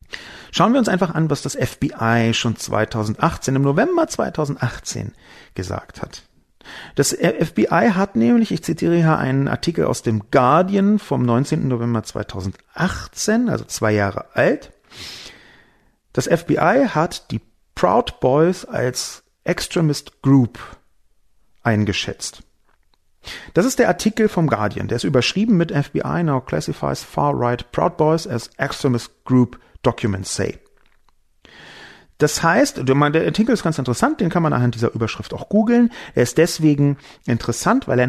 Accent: German